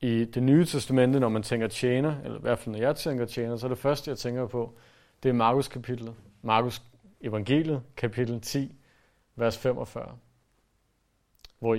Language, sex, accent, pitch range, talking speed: Danish, male, native, 115-140 Hz, 175 wpm